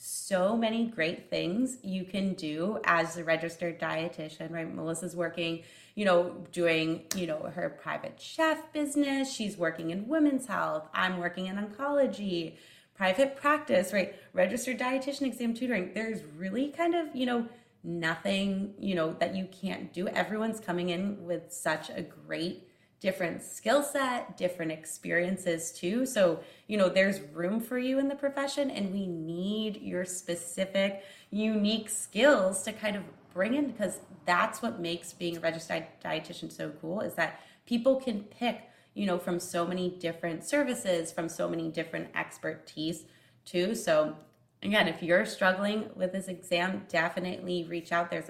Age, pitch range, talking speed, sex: 20-39, 170-225 Hz, 160 wpm, female